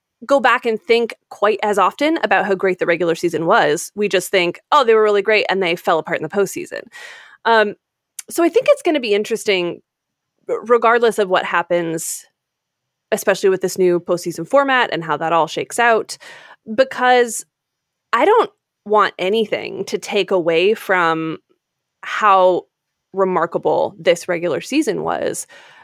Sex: female